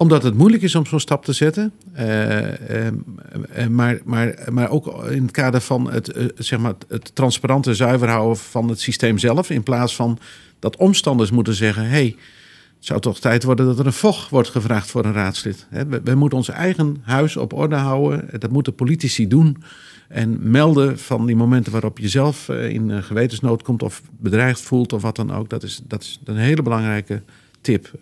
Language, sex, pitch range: Dutch, male, 110-135 Hz